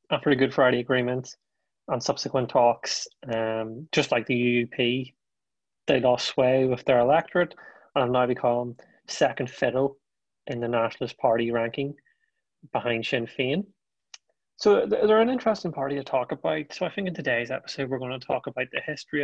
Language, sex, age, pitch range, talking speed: English, male, 30-49, 120-140 Hz, 170 wpm